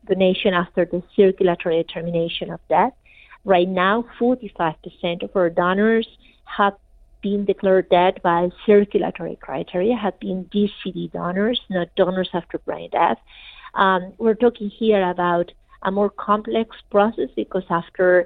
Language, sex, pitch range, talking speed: Spanish, female, 180-210 Hz, 130 wpm